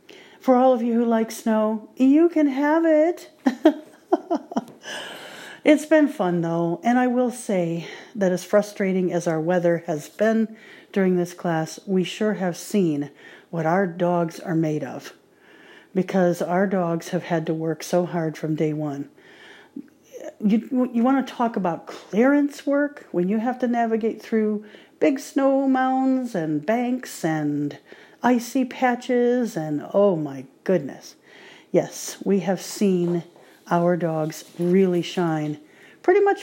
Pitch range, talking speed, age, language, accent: 175-255 Hz, 145 wpm, 50-69, English, American